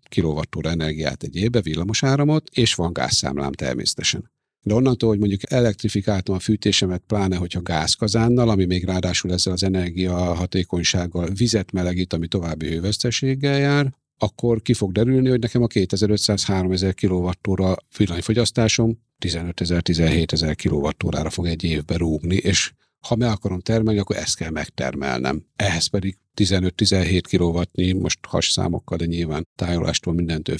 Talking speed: 135 wpm